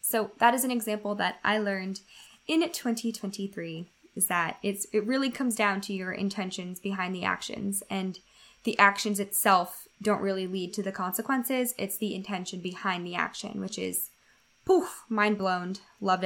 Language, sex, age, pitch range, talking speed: English, female, 10-29, 195-235 Hz, 165 wpm